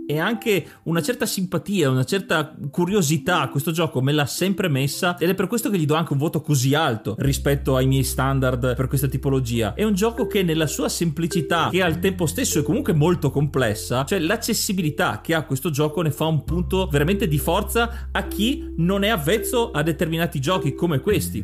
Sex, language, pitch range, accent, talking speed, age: male, Italian, 135-175 Hz, native, 200 wpm, 30-49